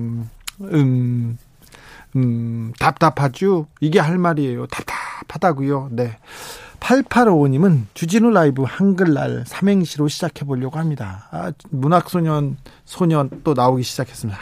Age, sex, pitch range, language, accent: 40-59, male, 125-175 Hz, Korean, native